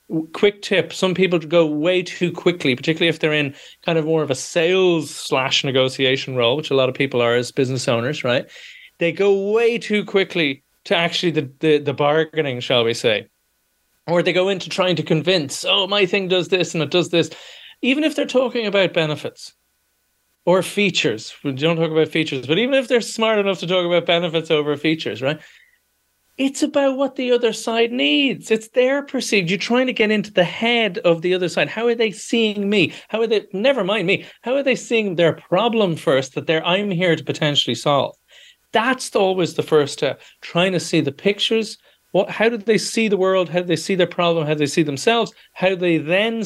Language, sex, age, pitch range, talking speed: English, male, 30-49, 155-215 Hz, 215 wpm